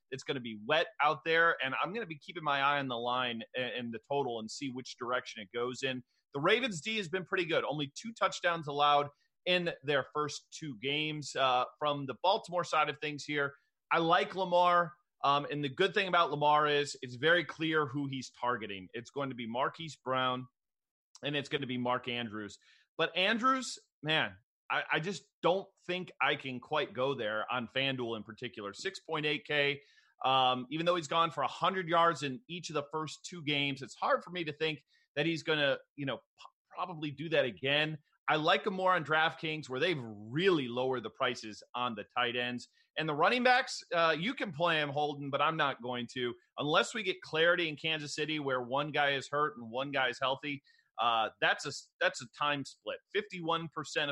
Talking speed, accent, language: 210 wpm, American, English